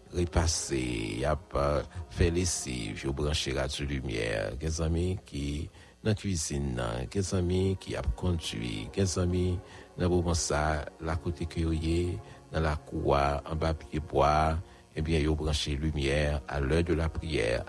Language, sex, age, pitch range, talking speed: English, male, 60-79, 75-90 Hz, 160 wpm